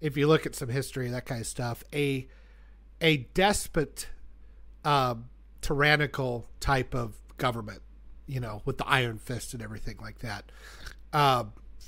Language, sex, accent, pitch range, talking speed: English, male, American, 120-160 Hz, 150 wpm